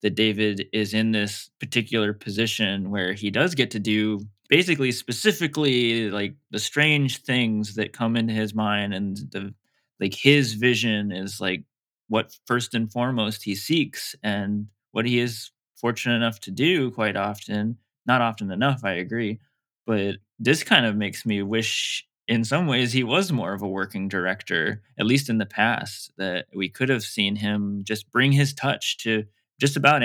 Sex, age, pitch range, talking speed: male, 20-39, 105-125 Hz, 175 wpm